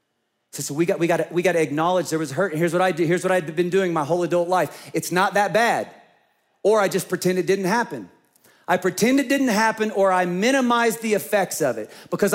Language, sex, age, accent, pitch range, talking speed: English, male, 40-59, American, 150-195 Hz, 250 wpm